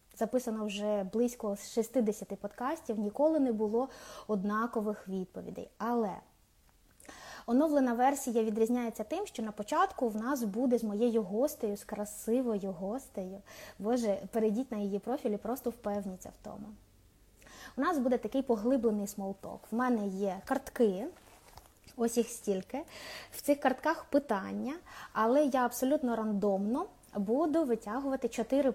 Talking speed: 125 wpm